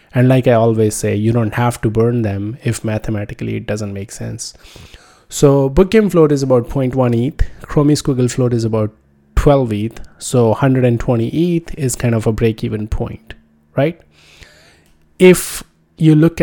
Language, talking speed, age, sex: English, 170 wpm, 20-39, male